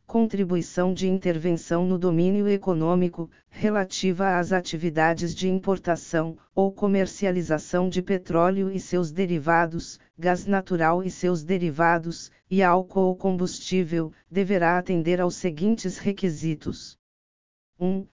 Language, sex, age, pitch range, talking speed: Portuguese, female, 50-69, 170-190 Hz, 110 wpm